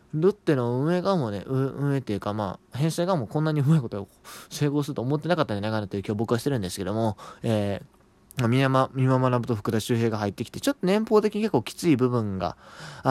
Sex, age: male, 20-39